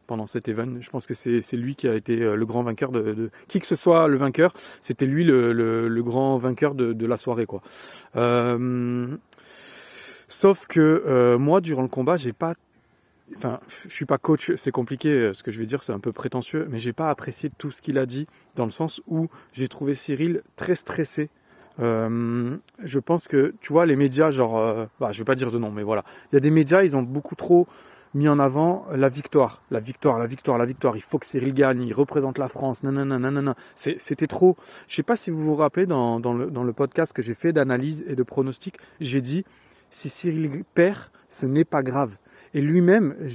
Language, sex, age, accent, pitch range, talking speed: French, male, 30-49, French, 125-155 Hz, 235 wpm